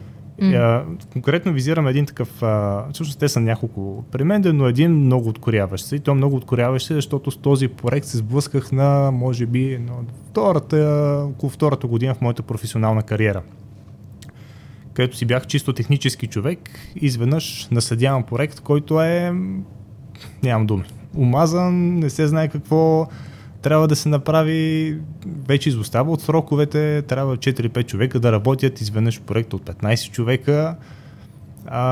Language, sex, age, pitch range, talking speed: Bulgarian, male, 20-39, 115-145 Hz, 140 wpm